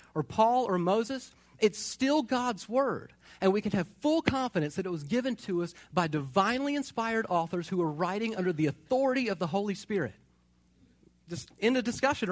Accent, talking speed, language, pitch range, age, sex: American, 185 wpm, English, 140-230 Hz, 40-59, male